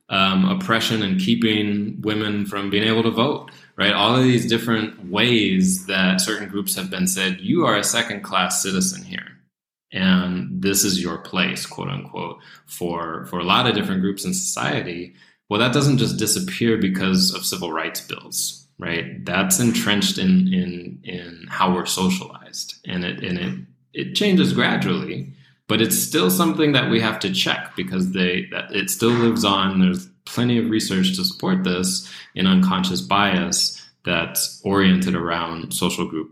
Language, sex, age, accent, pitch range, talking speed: English, male, 20-39, American, 90-110 Hz, 165 wpm